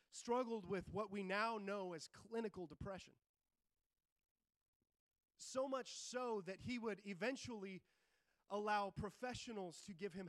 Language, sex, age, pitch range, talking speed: English, male, 30-49, 175-230 Hz, 120 wpm